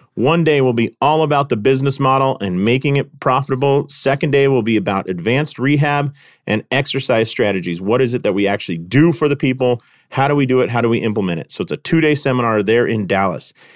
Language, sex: English, male